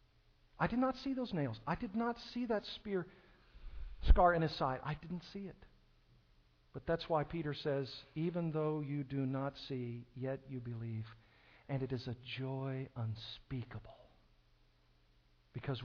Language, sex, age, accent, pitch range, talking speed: English, male, 50-69, American, 130-205 Hz, 155 wpm